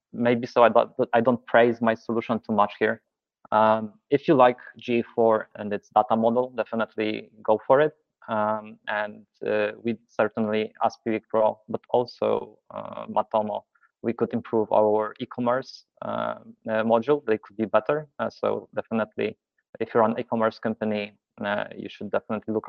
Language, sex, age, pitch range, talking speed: English, male, 20-39, 110-120 Hz, 160 wpm